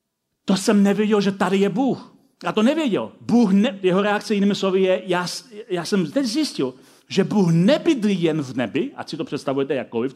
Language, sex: Czech, male